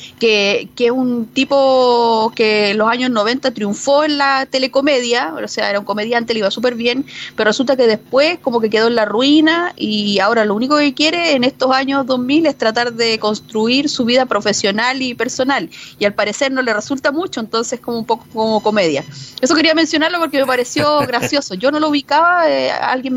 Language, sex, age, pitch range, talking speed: Spanish, female, 30-49, 220-280 Hz, 200 wpm